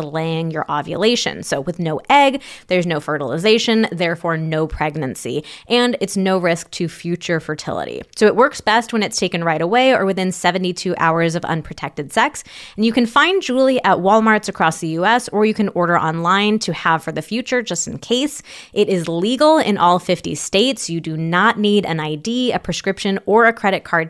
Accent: American